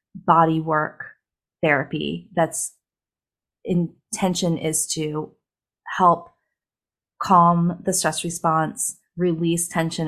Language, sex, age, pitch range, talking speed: English, female, 20-39, 165-200 Hz, 85 wpm